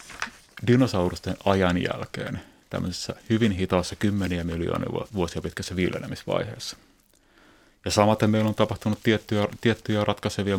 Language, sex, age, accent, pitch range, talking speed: Finnish, male, 30-49, native, 90-105 Hz, 110 wpm